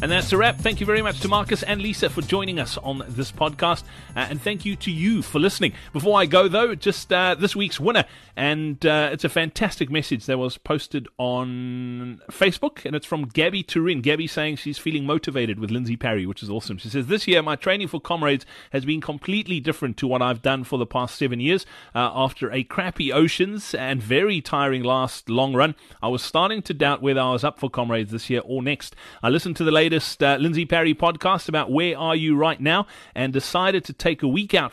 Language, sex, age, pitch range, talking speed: English, male, 30-49, 130-170 Hz, 225 wpm